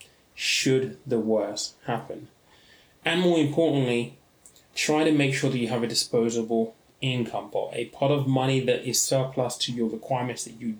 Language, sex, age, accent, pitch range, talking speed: English, male, 20-39, British, 115-140 Hz, 165 wpm